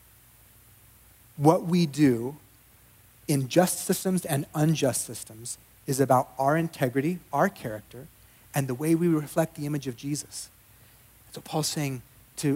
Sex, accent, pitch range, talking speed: male, American, 115-150 Hz, 135 wpm